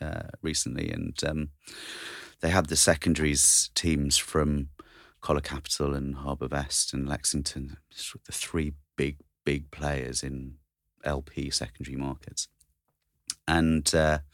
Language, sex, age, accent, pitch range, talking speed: English, male, 30-49, British, 70-80 Hz, 120 wpm